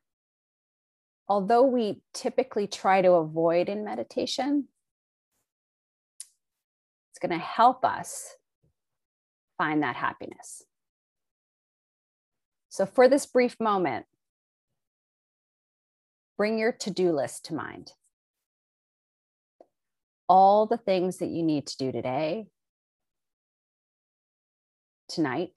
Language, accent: English, American